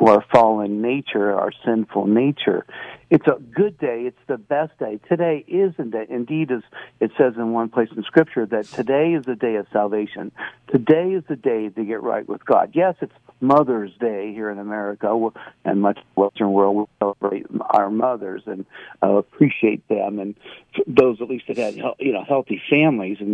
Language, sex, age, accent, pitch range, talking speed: English, male, 60-79, American, 105-135 Hz, 195 wpm